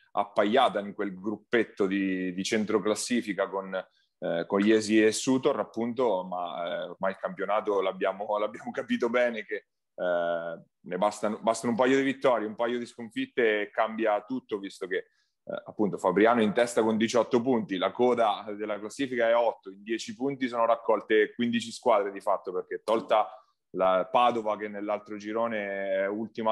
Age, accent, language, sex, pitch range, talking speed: 30-49, native, Italian, male, 100-125 Hz, 165 wpm